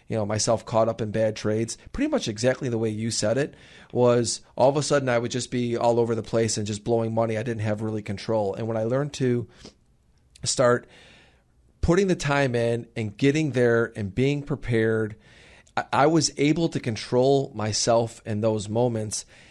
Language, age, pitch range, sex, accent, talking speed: English, 30-49, 110-135 Hz, male, American, 195 wpm